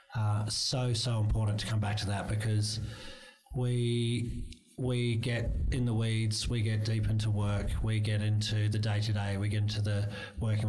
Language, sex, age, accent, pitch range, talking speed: English, male, 30-49, Australian, 105-120 Hz, 175 wpm